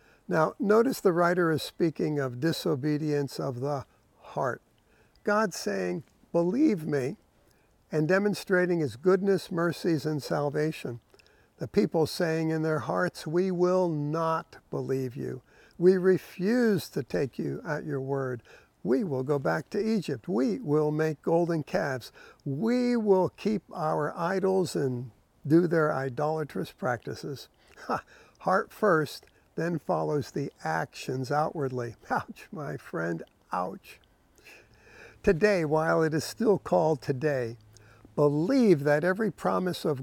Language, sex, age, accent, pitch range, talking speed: English, male, 60-79, American, 140-190 Hz, 125 wpm